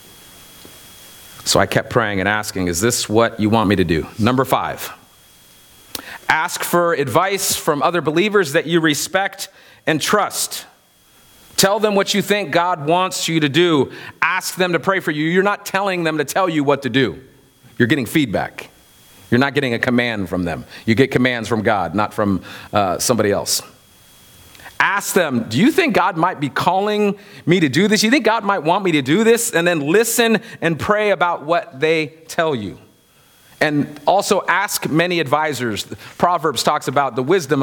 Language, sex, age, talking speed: English, male, 40-59, 185 wpm